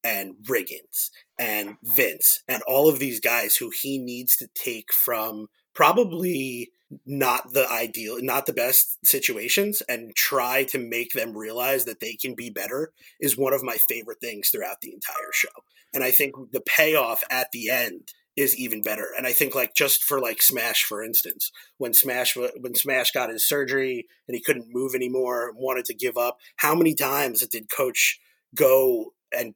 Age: 30-49